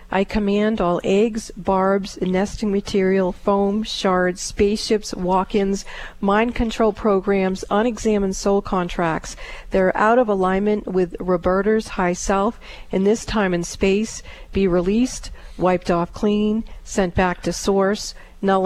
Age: 40-59